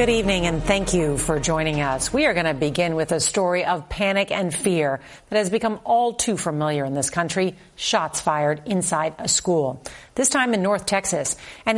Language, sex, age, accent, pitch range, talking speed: English, female, 50-69, American, 160-210 Hz, 205 wpm